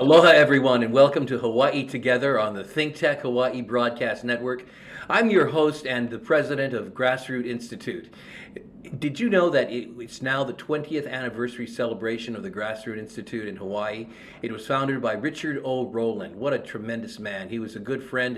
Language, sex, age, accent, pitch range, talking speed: English, male, 50-69, American, 120-140 Hz, 175 wpm